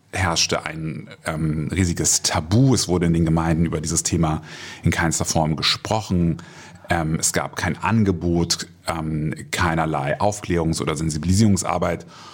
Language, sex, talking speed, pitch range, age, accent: German, male, 130 wpm, 85-95 Hz, 30-49, German